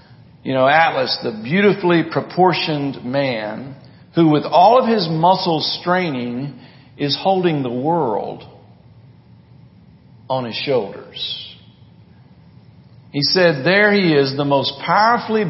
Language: English